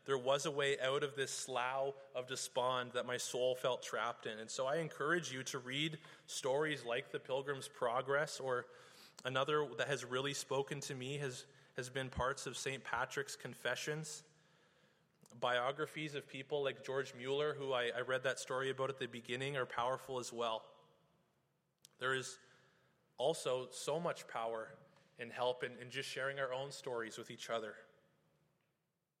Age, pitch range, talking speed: 20-39, 130-155 Hz, 170 wpm